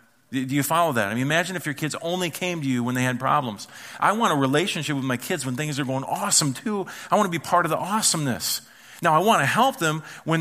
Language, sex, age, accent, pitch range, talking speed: English, male, 40-59, American, 125-160 Hz, 265 wpm